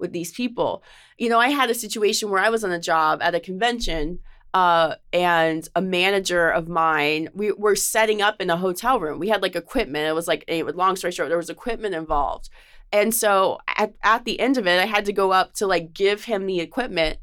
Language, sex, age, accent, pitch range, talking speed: English, female, 20-39, American, 175-225 Hz, 230 wpm